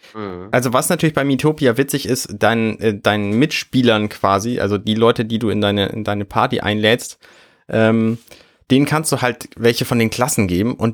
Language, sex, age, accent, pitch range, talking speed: German, male, 30-49, German, 100-120 Hz, 180 wpm